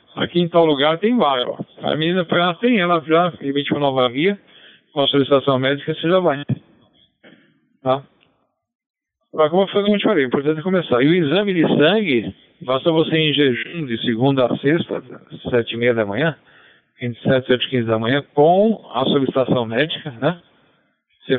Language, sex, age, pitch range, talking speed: Portuguese, male, 60-79, 125-165 Hz, 190 wpm